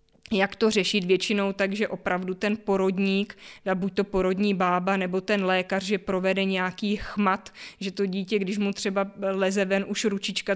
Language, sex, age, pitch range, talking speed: Czech, female, 20-39, 190-200 Hz, 165 wpm